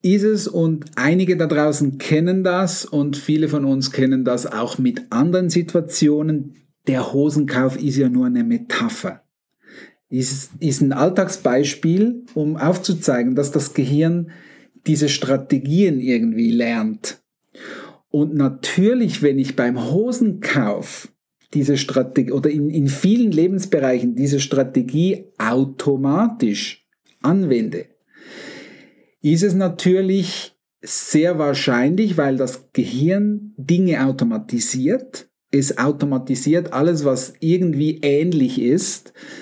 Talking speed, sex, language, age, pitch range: 110 wpm, male, German, 50-69, 135-185 Hz